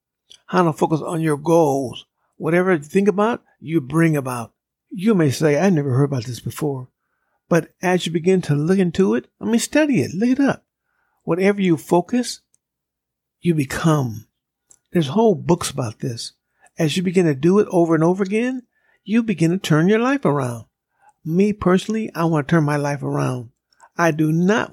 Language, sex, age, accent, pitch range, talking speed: English, male, 60-79, American, 155-200 Hz, 185 wpm